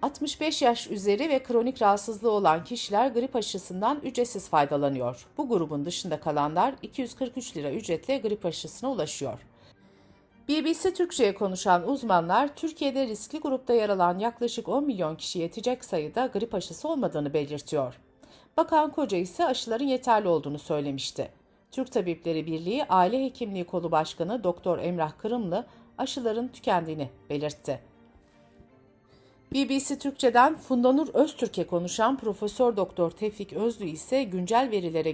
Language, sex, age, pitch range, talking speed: Turkish, female, 60-79, 165-260 Hz, 125 wpm